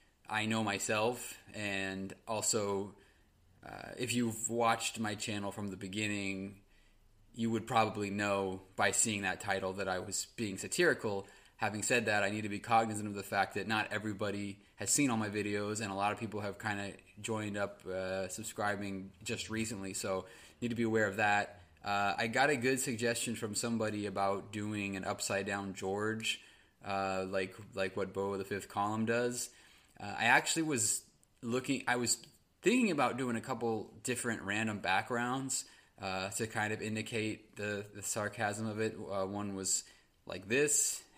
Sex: male